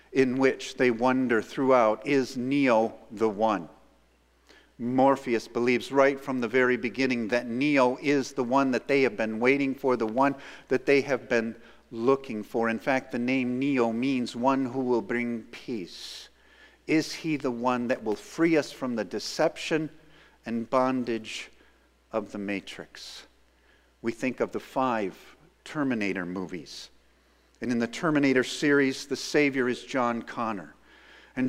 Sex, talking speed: male, 150 wpm